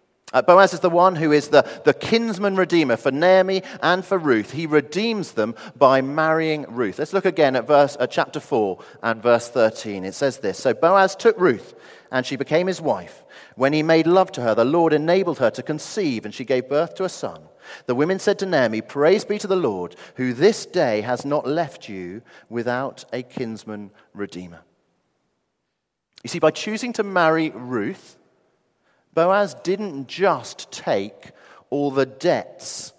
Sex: male